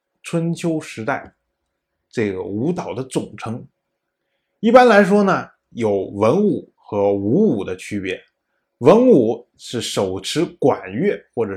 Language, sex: Chinese, male